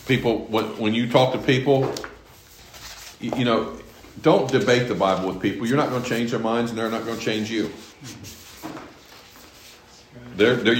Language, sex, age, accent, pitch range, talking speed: English, male, 50-69, American, 105-130 Hz, 165 wpm